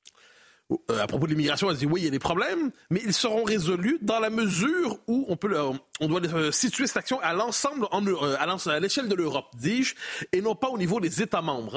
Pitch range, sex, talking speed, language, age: 155-225 Hz, male, 255 wpm, French, 30-49